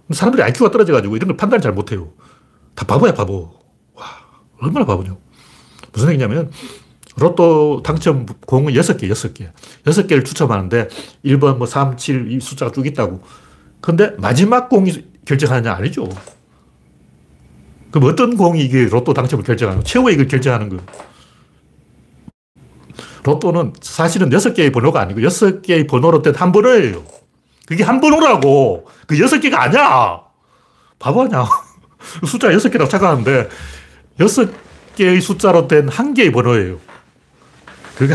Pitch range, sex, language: 105-165 Hz, male, Korean